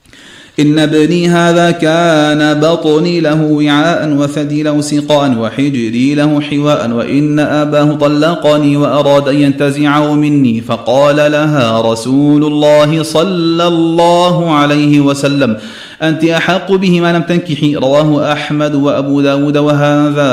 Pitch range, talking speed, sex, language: 145-170 Hz, 115 wpm, male, Arabic